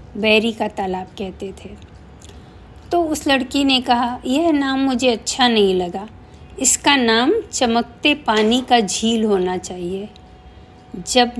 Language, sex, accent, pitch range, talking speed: Hindi, female, native, 195-265 Hz, 130 wpm